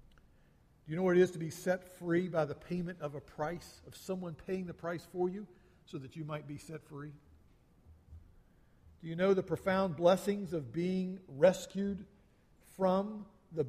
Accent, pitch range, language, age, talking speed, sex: American, 125-185 Hz, English, 50-69, 180 wpm, male